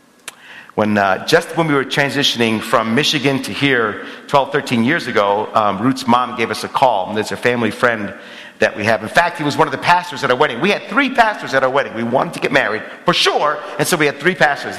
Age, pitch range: 50-69, 110-145 Hz